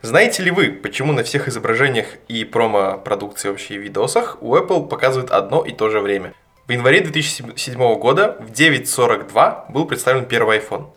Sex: male